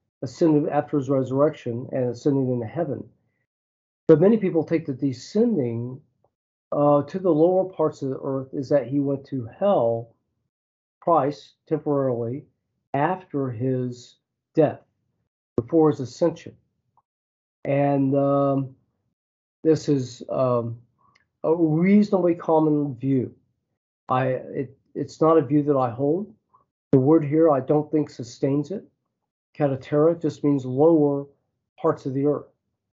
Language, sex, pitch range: English, male, 125-155 Hz